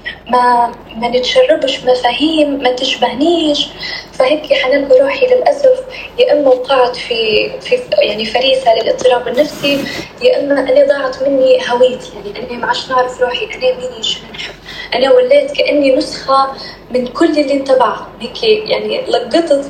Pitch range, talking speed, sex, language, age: 250-310 Hz, 145 wpm, female, Arabic, 10-29